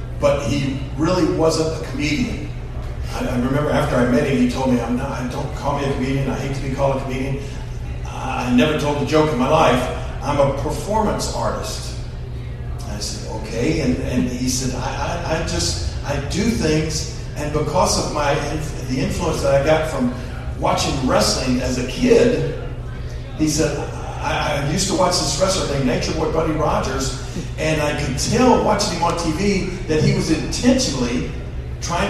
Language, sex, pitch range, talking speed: English, male, 120-155 Hz, 180 wpm